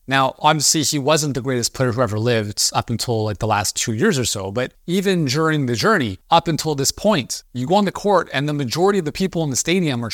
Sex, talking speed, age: male, 255 wpm, 30-49